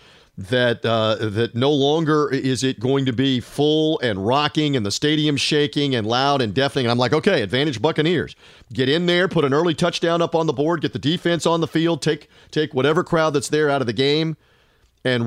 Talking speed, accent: 215 wpm, American